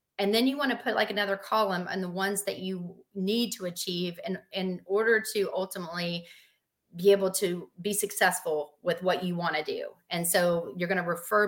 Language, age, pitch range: English, 30-49, 180-210 Hz